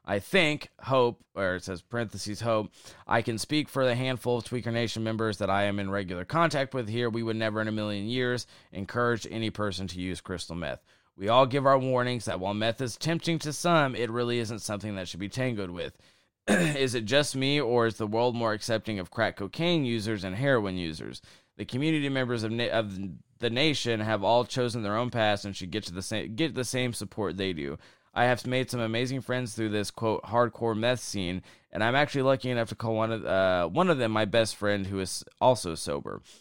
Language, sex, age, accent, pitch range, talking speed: English, male, 20-39, American, 100-125 Hz, 220 wpm